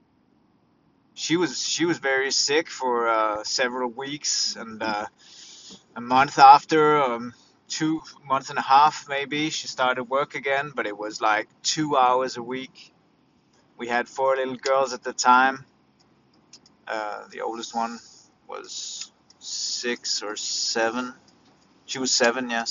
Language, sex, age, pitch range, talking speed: English, male, 30-49, 115-135 Hz, 145 wpm